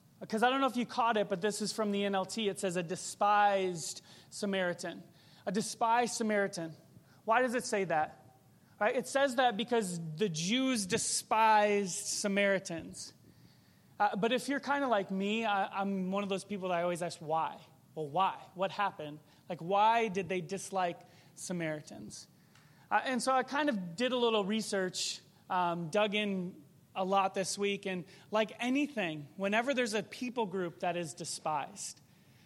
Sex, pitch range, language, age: male, 175-225 Hz, English, 30-49